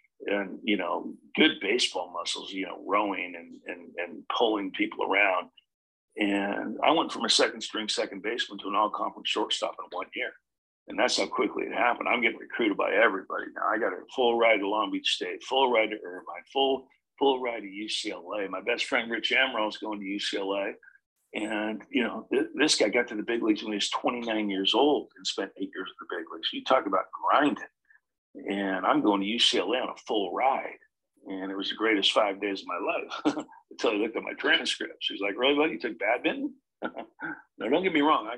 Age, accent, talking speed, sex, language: 50-69, American, 215 wpm, male, English